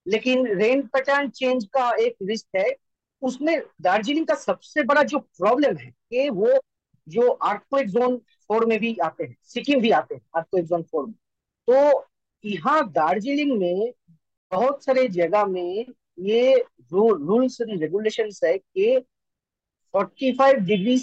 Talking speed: 140 wpm